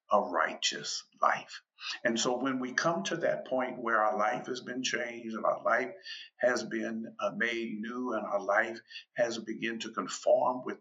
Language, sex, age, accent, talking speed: English, male, 50-69, American, 180 wpm